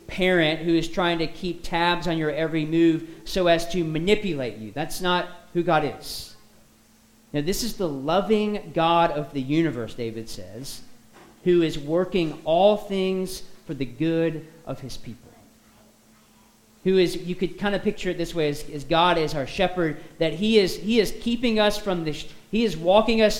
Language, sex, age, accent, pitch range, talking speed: English, male, 40-59, American, 155-185 Hz, 180 wpm